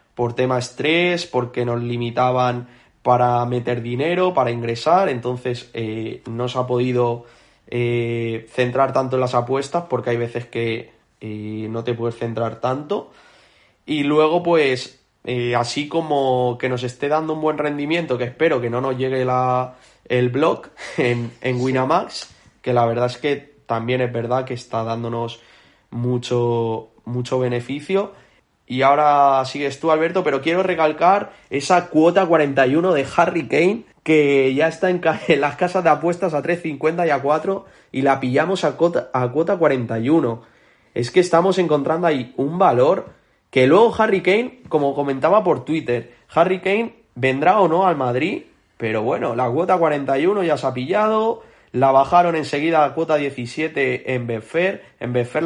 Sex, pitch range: male, 120-160 Hz